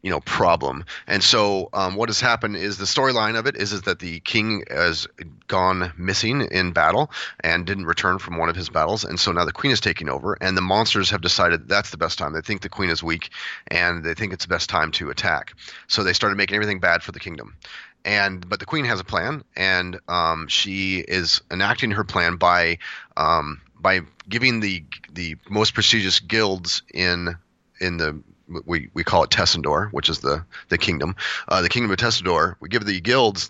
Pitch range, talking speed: 90-105 Hz, 215 wpm